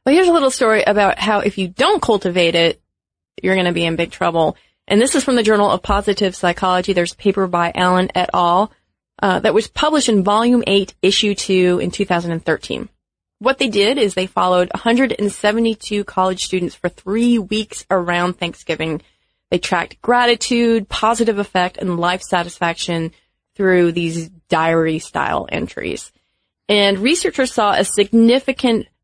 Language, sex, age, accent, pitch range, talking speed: English, female, 30-49, American, 175-215 Hz, 160 wpm